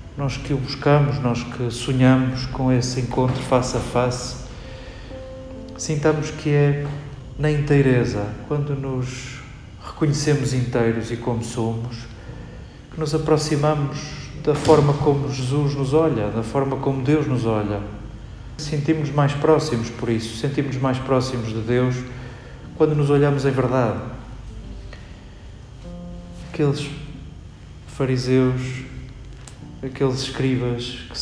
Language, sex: Portuguese, male